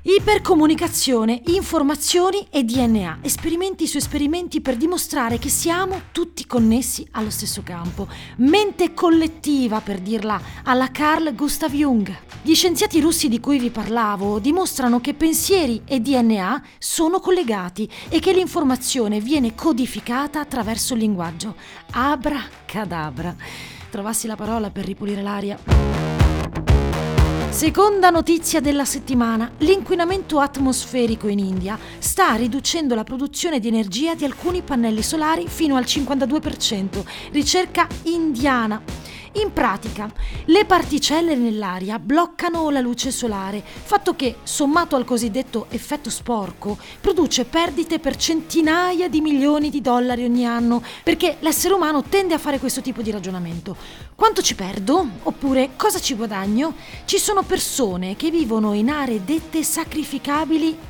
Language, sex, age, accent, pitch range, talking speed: Italian, female, 40-59, native, 225-325 Hz, 125 wpm